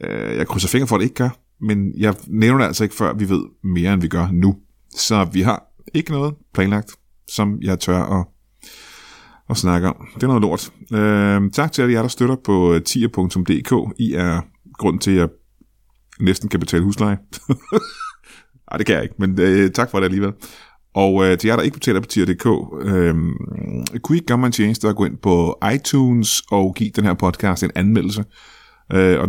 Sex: male